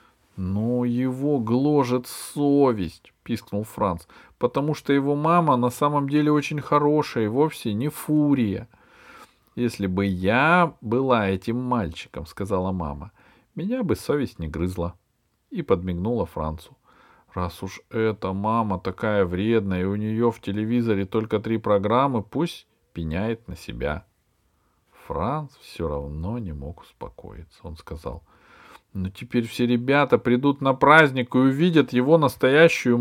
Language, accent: Russian, native